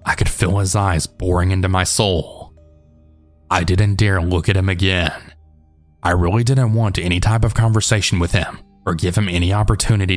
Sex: male